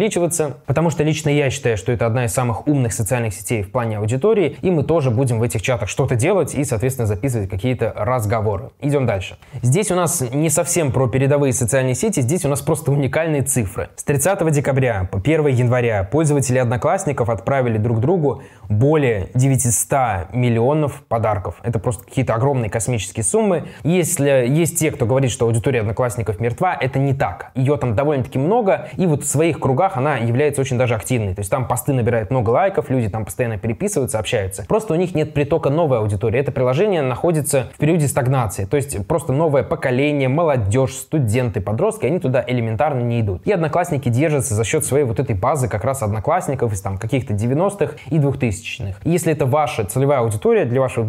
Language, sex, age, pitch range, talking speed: Russian, male, 20-39, 115-145 Hz, 185 wpm